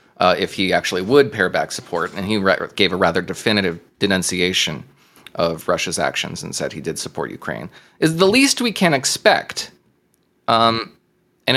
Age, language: 30-49, English